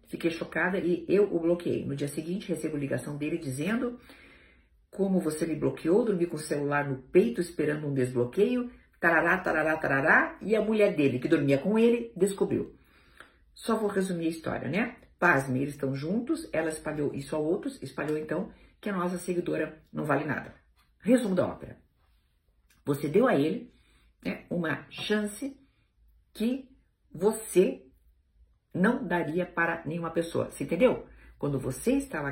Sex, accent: female, Brazilian